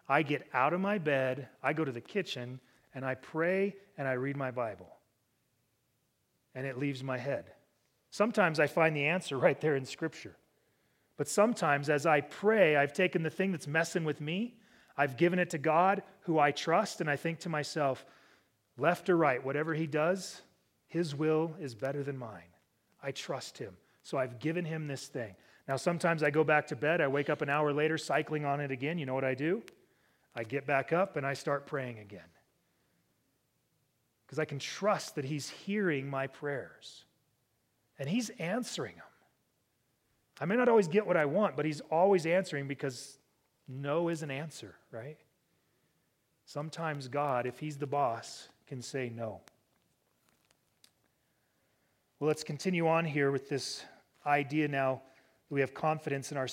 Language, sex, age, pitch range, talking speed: English, male, 30-49, 135-165 Hz, 175 wpm